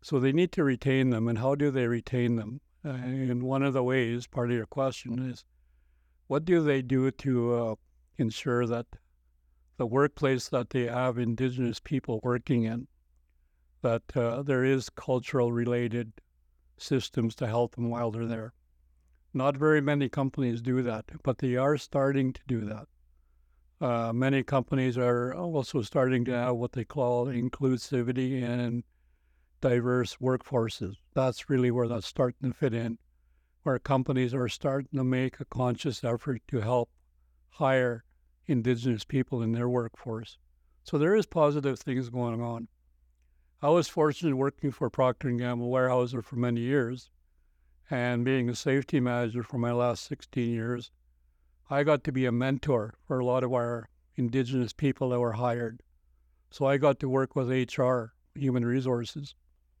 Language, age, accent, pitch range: English, 60-79, American, 110-130 Hz